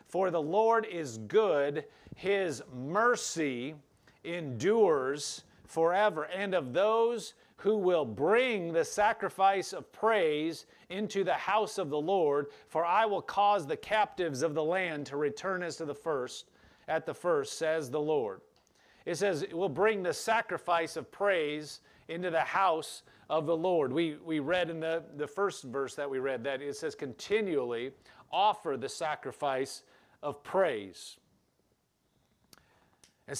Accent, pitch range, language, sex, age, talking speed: American, 150-195 Hz, English, male, 40-59, 145 wpm